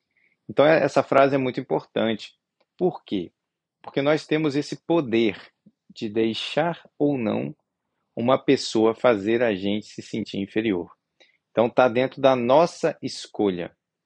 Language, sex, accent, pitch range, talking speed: Portuguese, male, Brazilian, 105-130 Hz, 130 wpm